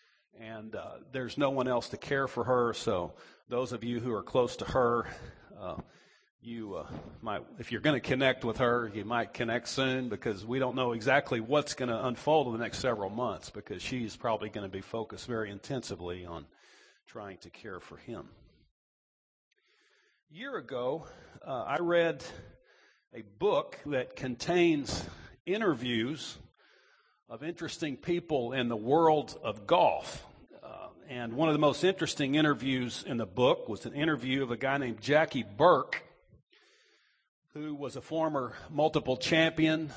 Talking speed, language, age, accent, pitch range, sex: 160 wpm, English, 50-69, American, 120-155 Hz, male